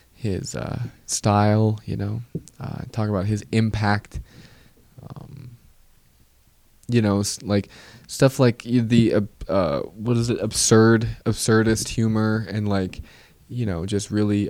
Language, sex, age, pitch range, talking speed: English, male, 20-39, 100-120 Hz, 130 wpm